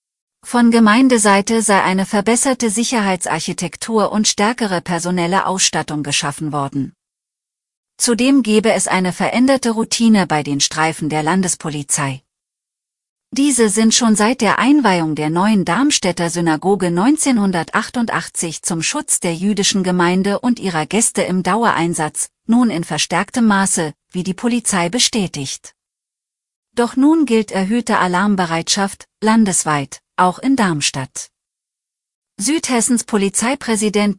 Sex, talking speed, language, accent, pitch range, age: female, 110 wpm, German, German, 175-230 Hz, 40-59